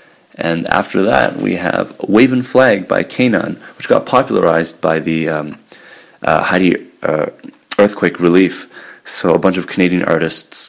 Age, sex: 30-49, male